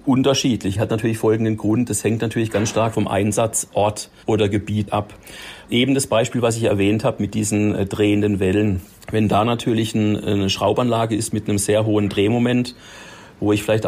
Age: 40-59